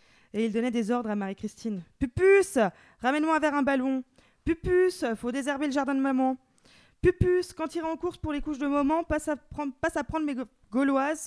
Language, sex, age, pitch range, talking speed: French, female, 20-39, 210-260 Hz, 210 wpm